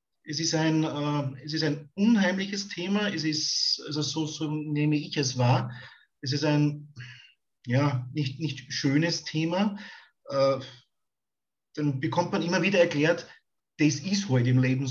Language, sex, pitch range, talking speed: German, male, 130-160 Hz, 155 wpm